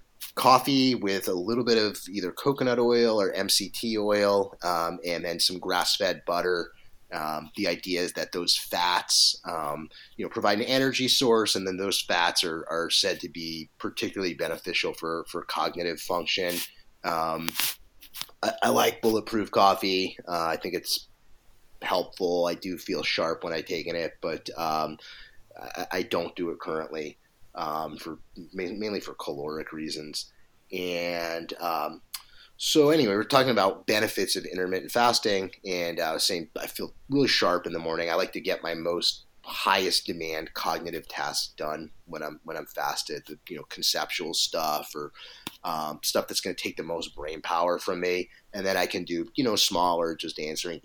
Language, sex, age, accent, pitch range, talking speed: English, male, 30-49, American, 80-105 Hz, 170 wpm